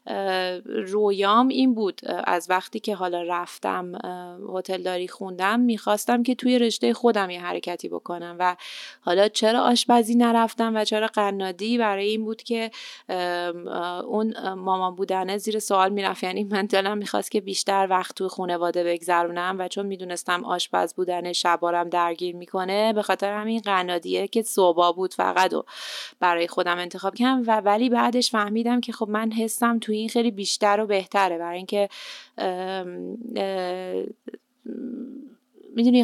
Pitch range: 185-230 Hz